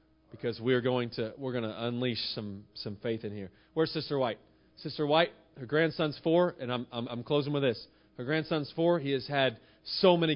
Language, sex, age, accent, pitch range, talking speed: English, male, 40-59, American, 120-160 Hz, 215 wpm